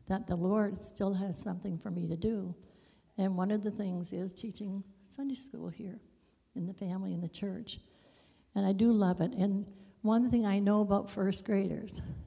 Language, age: English, 60-79